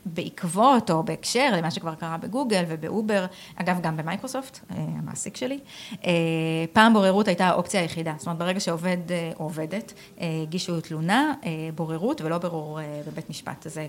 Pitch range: 165-215 Hz